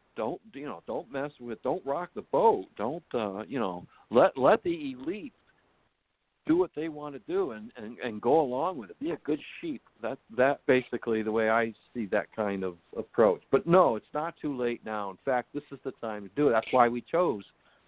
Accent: American